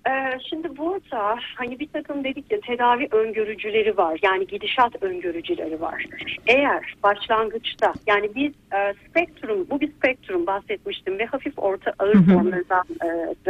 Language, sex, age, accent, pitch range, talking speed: Turkish, female, 40-59, native, 200-310 Hz, 135 wpm